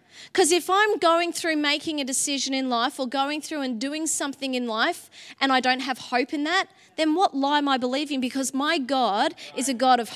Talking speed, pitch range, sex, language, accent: 225 wpm, 230-295 Hz, female, English, Australian